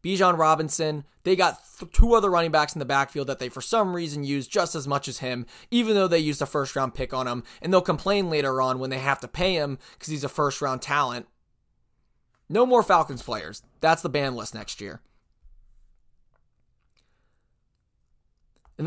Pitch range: 125-165 Hz